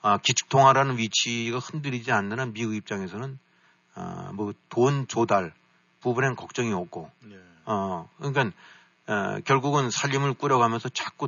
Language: Korean